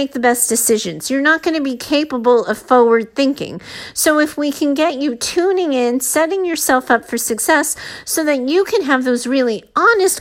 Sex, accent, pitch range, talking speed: female, American, 225-290 Hz, 195 wpm